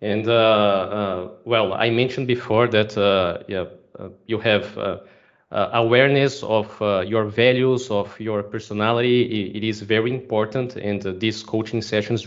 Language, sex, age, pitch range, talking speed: English, male, 20-39, 105-125 Hz, 155 wpm